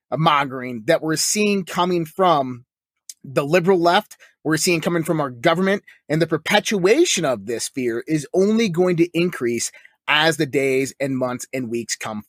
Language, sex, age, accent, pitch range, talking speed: English, male, 30-49, American, 160-215 Hz, 170 wpm